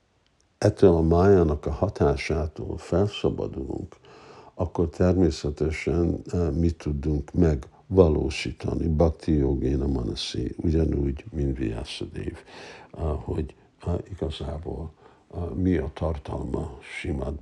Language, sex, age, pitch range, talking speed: Hungarian, male, 60-79, 75-90 Hz, 80 wpm